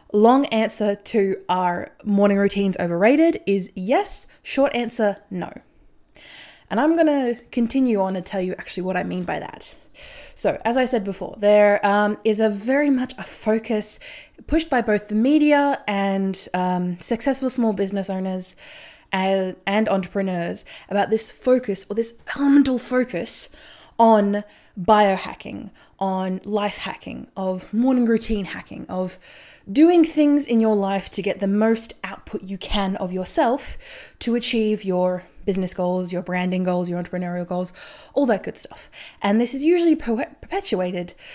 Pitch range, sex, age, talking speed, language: 185-240 Hz, female, 20-39, 150 wpm, English